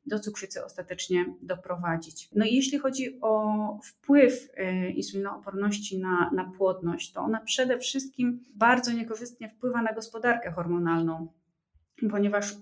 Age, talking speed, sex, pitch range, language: 30-49, 120 wpm, female, 185-220 Hz, Polish